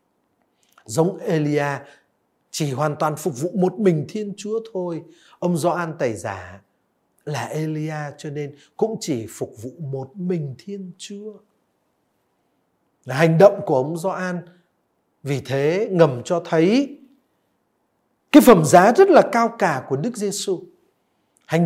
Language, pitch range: Vietnamese, 145-200 Hz